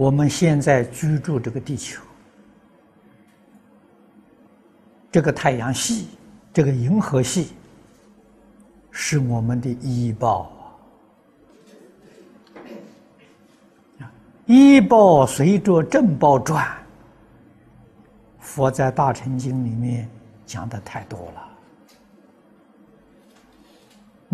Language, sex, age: Chinese, male, 60-79